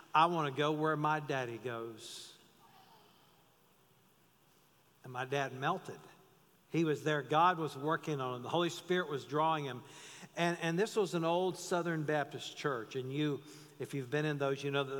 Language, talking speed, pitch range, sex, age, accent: English, 180 wpm, 140-180 Hz, male, 50-69, American